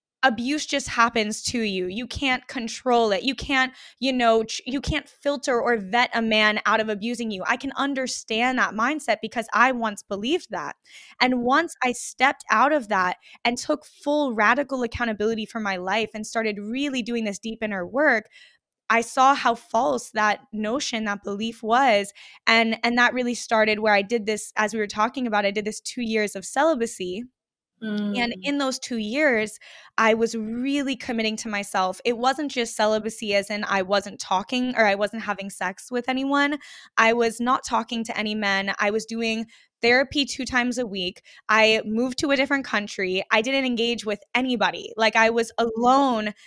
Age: 10-29